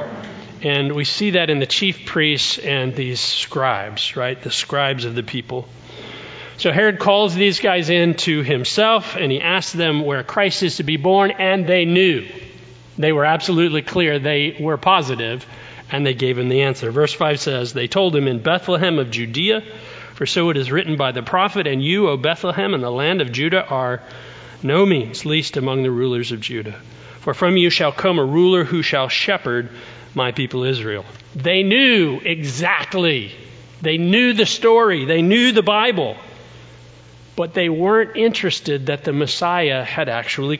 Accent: American